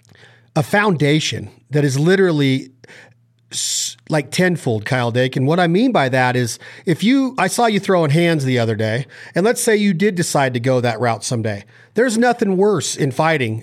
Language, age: English, 40-59